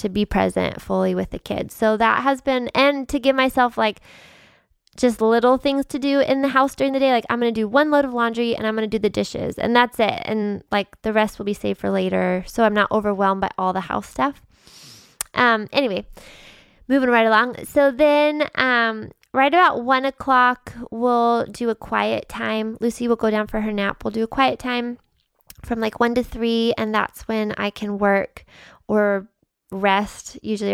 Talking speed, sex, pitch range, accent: 210 wpm, female, 205-250 Hz, American